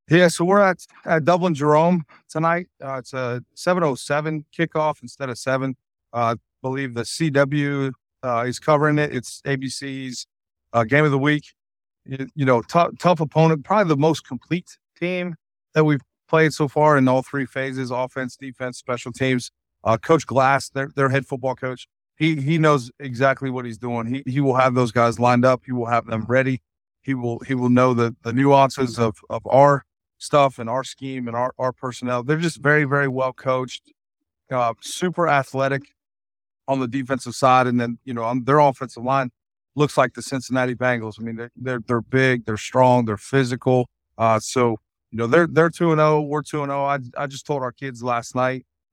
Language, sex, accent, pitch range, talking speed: English, male, American, 125-150 Hz, 195 wpm